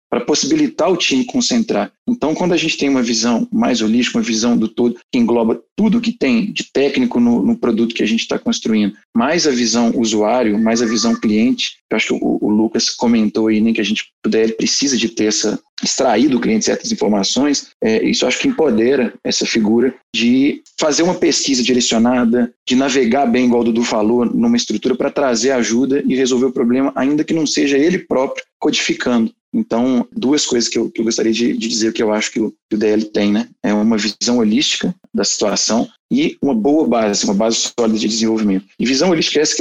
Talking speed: 215 wpm